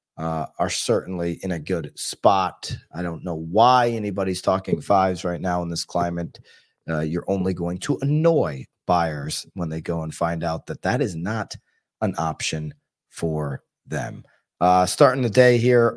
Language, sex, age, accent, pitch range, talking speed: English, male, 30-49, American, 90-135 Hz, 170 wpm